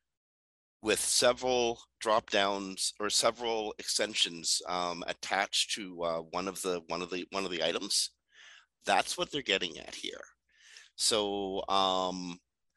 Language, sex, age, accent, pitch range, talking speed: English, male, 50-69, American, 80-110 Hz, 135 wpm